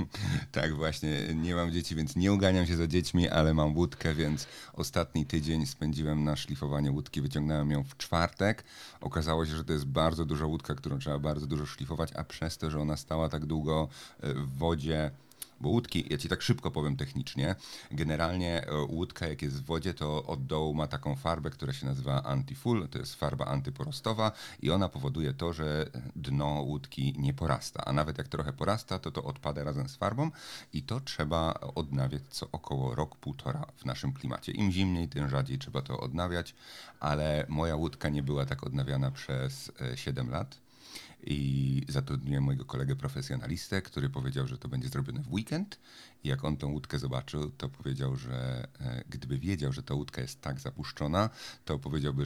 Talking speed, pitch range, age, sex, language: 180 wpm, 70-85 Hz, 40-59, male, Polish